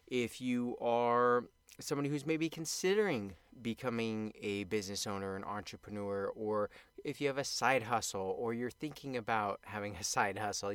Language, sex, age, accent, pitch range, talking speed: English, male, 30-49, American, 105-130 Hz, 155 wpm